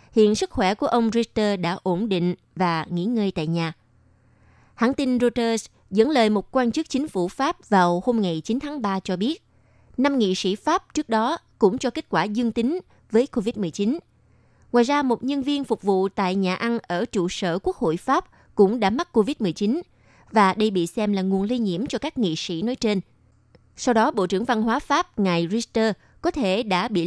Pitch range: 185-245 Hz